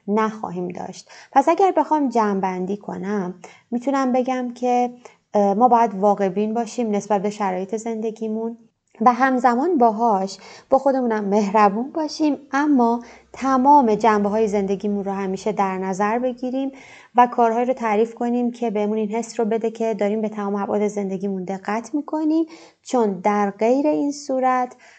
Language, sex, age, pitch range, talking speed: Persian, female, 20-39, 205-250 Hz, 140 wpm